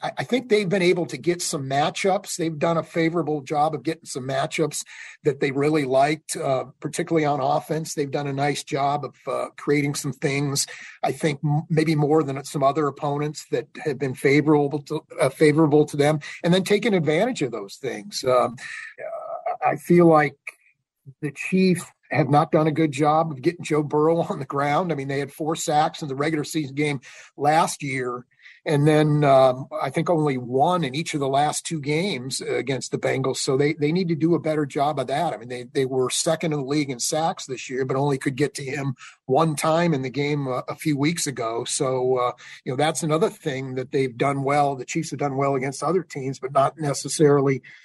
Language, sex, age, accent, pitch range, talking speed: English, male, 40-59, American, 140-160 Hz, 215 wpm